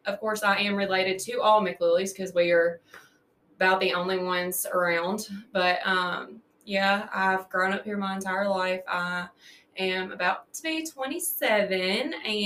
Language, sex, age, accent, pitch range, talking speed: English, female, 20-39, American, 185-210 Hz, 155 wpm